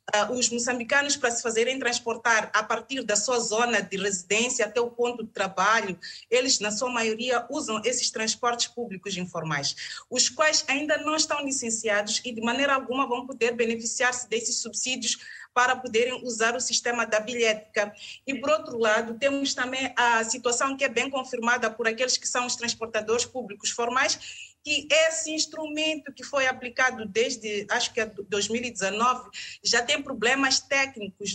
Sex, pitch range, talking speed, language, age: female, 220-265 Hz, 160 wpm, Portuguese, 30-49